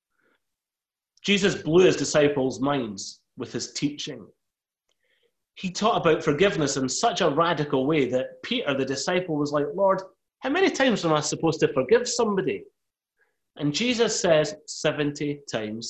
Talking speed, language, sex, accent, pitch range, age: 145 wpm, English, male, British, 130-180 Hz, 30-49